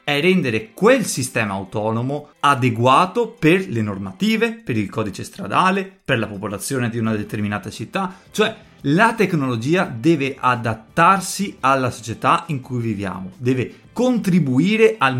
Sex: male